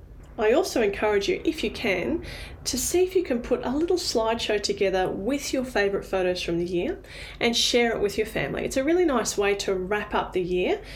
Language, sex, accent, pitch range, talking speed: English, female, Australian, 195-245 Hz, 220 wpm